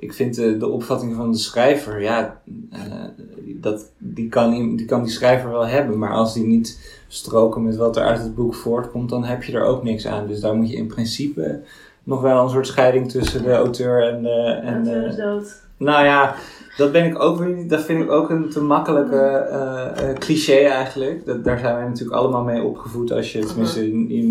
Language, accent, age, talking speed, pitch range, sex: Dutch, Dutch, 20-39, 215 wpm, 105-125 Hz, male